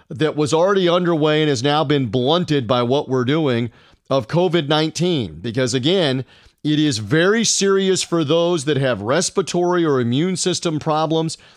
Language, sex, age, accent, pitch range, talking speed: English, male, 40-59, American, 135-180 Hz, 155 wpm